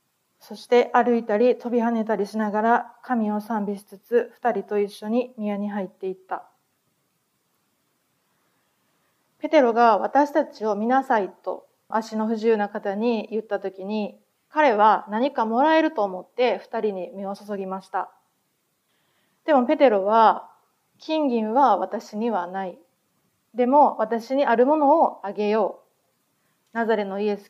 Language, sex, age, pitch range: Japanese, female, 30-49, 205-245 Hz